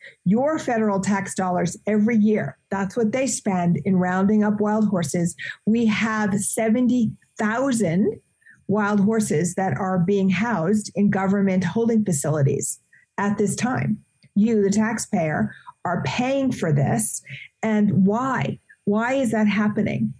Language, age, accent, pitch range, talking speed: English, 50-69, American, 195-225 Hz, 130 wpm